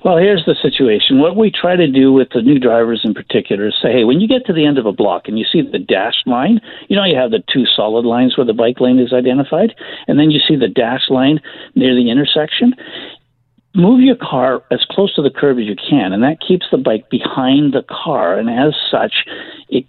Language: English